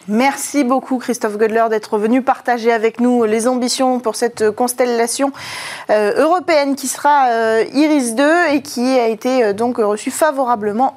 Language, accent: French, French